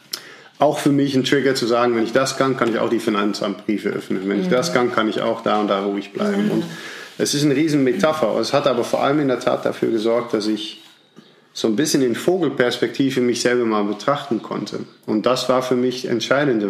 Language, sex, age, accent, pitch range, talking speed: German, male, 40-59, German, 110-130 Hz, 225 wpm